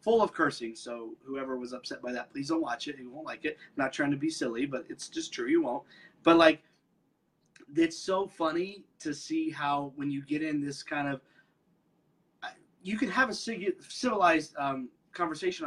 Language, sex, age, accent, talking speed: English, male, 30-49, American, 195 wpm